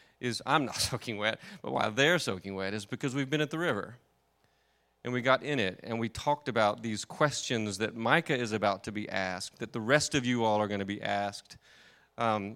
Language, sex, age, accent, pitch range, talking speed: English, male, 30-49, American, 110-140 Hz, 225 wpm